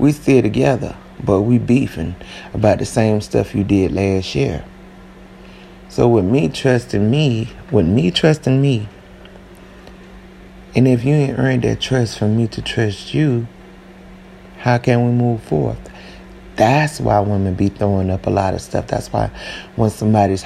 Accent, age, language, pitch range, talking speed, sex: American, 30-49, English, 95-115 Hz, 160 wpm, male